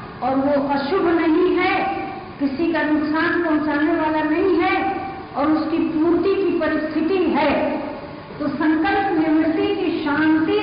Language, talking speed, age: Hindi, 130 wpm, 50-69